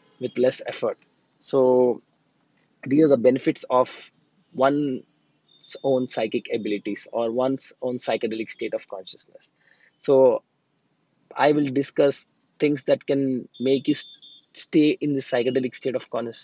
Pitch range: 115-135 Hz